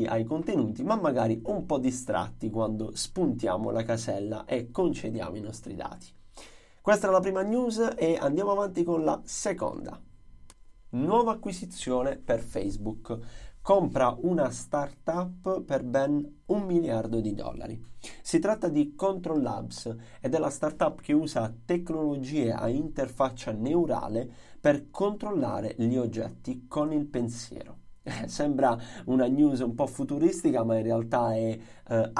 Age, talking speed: 30-49, 135 wpm